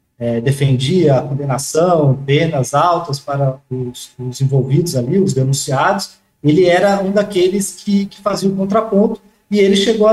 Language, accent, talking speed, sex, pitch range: Portuguese, Brazilian, 155 wpm, male, 140-190 Hz